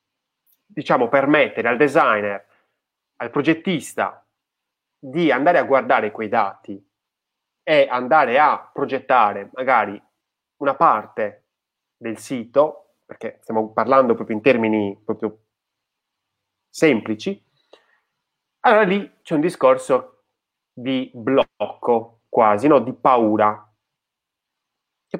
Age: 30-49